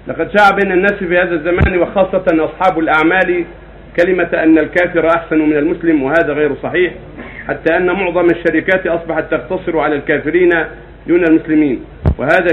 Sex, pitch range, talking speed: male, 145-175 Hz, 140 wpm